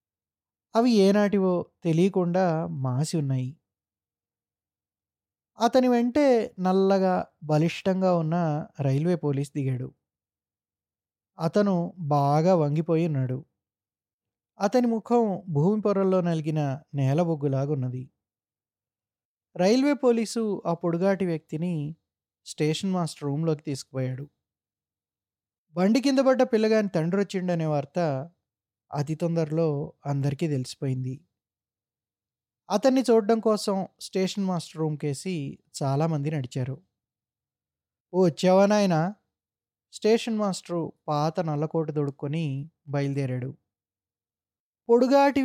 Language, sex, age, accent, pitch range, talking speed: Telugu, male, 20-39, native, 130-190 Hz, 75 wpm